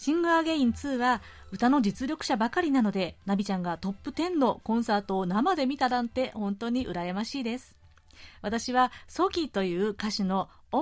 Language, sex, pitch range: Japanese, female, 200-280 Hz